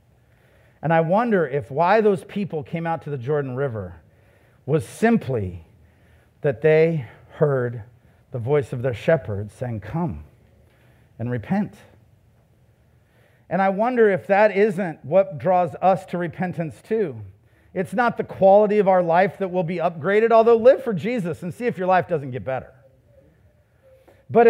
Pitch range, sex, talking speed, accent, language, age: 120-200 Hz, male, 155 wpm, American, English, 50-69